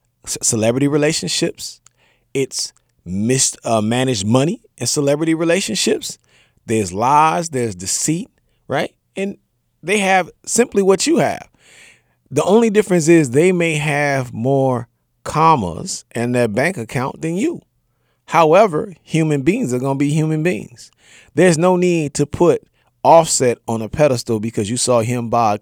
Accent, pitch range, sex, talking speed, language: American, 120-170 Hz, male, 140 wpm, English